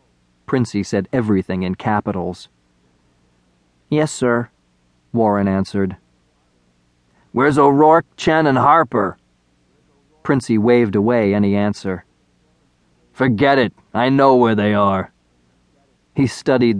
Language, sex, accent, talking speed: English, male, American, 100 wpm